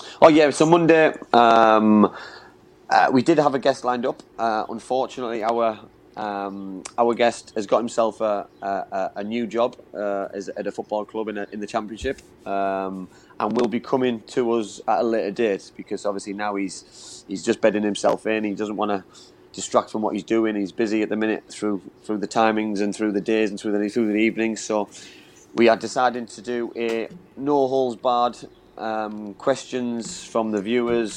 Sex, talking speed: male, 195 wpm